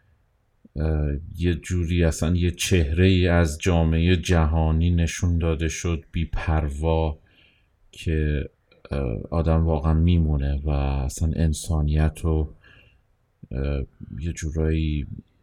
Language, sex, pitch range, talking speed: Persian, male, 75-95 Hz, 95 wpm